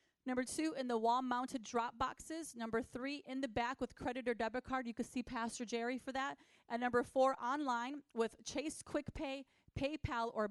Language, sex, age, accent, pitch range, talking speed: English, female, 30-49, American, 235-290 Hz, 195 wpm